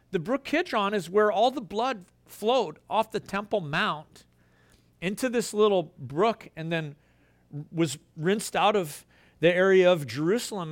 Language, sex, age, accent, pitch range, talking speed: English, male, 40-59, American, 165-220 Hz, 155 wpm